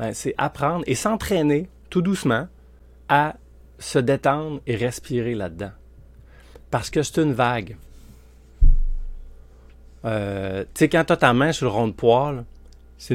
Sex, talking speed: male, 135 wpm